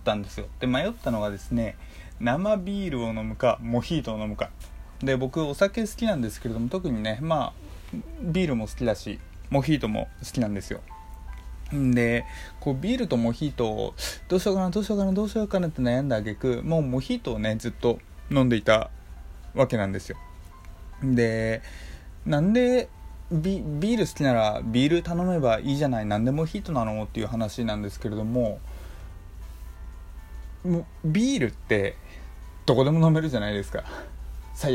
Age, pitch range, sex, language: 20-39, 105-160 Hz, male, Japanese